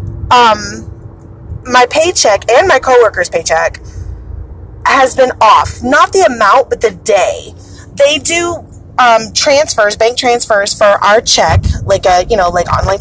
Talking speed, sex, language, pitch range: 140 wpm, female, English, 180-280 Hz